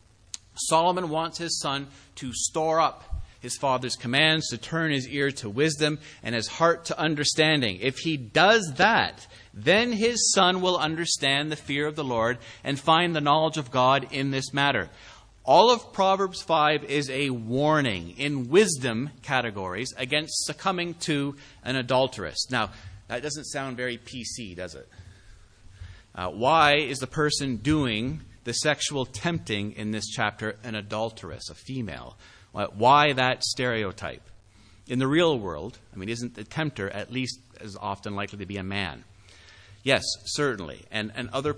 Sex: male